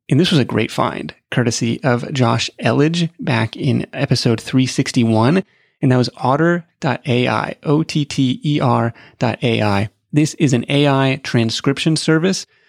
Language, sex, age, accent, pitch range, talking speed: English, male, 30-49, American, 125-160 Hz, 130 wpm